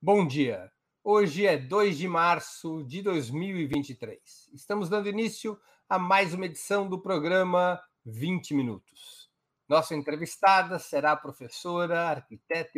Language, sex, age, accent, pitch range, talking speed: Portuguese, male, 60-79, Brazilian, 140-175 Hz, 120 wpm